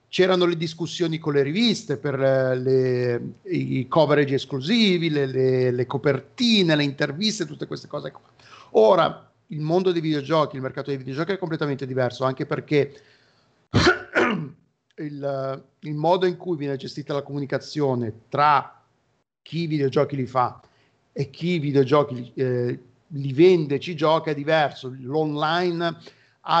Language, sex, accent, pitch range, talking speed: Italian, male, native, 135-160 Hz, 140 wpm